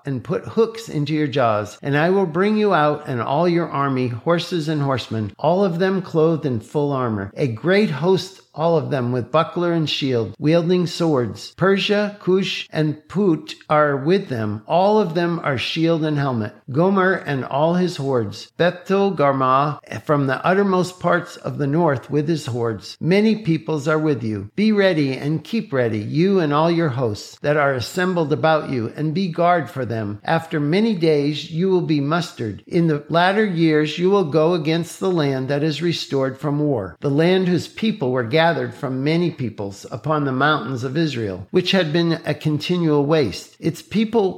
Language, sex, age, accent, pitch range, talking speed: English, male, 50-69, American, 135-175 Hz, 190 wpm